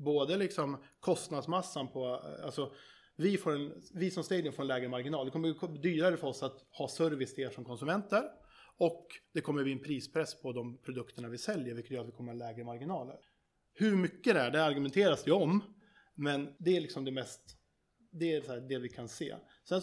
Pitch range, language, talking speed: 130-170 Hz, Swedish, 210 wpm